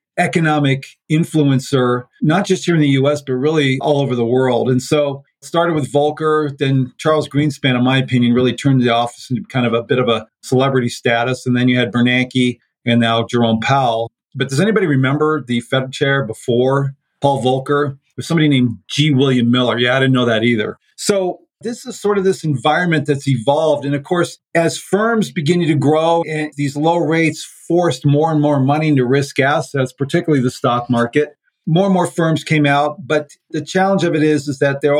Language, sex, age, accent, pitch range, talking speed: English, male, 40-59, American, 130-160 Hz, 200 wpm